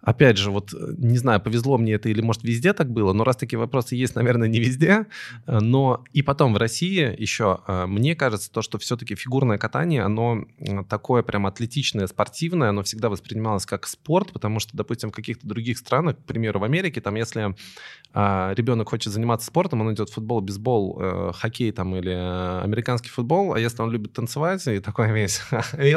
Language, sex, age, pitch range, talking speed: Russian, male, 20-39, 100-125 Hz, 185 wpm